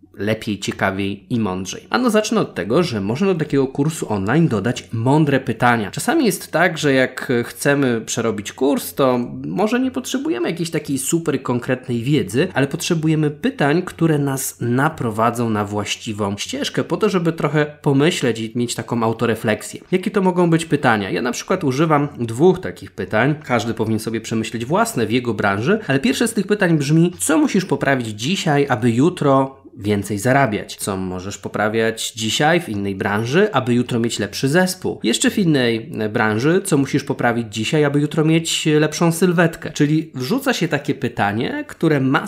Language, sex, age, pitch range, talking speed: Polish, male, 20-39, 115-160 Hz, 170 wpm